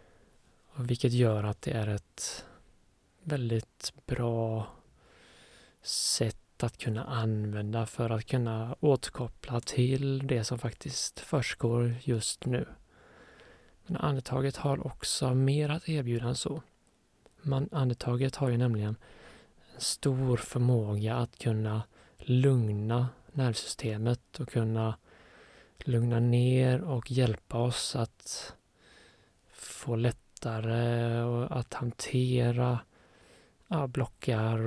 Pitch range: 110-130 Hz